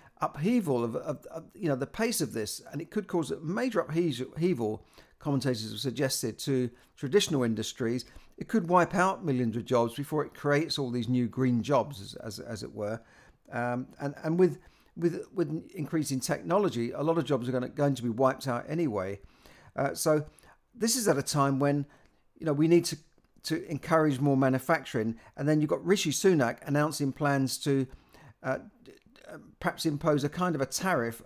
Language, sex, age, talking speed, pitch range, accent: English, male, 50-69, 190 wpm, 125-155 Hz, British